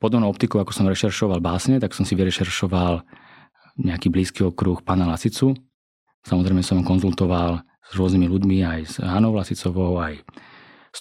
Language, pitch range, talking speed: Slovak, 90-110 Hz, 145 wpm